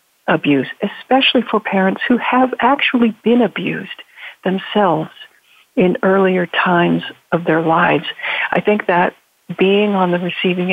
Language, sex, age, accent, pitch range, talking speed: English, female, 60-79, American, 175-215 Hz, 130 wpm